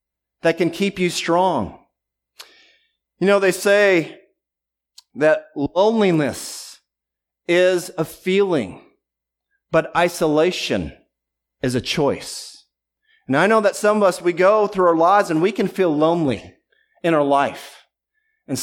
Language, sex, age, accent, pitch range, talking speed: English, male, 40-59, American, 155-190 Hz, 130 wpm